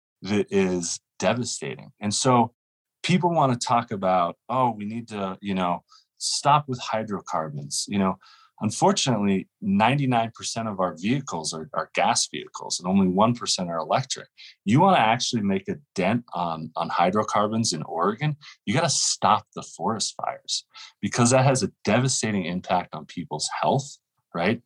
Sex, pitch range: male, 95-130 Hz